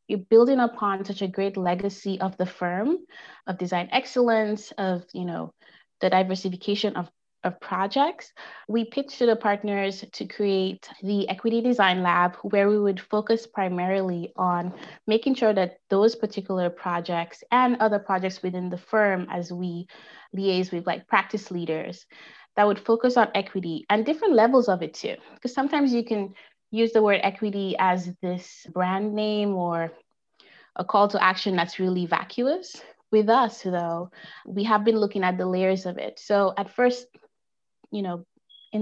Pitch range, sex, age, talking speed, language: 180-215 Hz, female, 20-39, 160 wpm, English